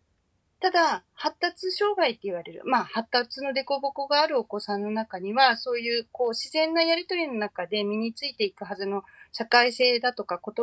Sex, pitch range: female, 195-290 Hz